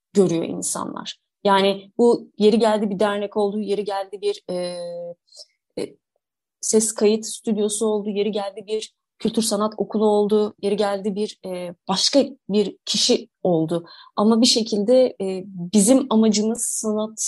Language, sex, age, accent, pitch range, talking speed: Turkish, female, 30-49, native, 195-235 Hz, 140 wpm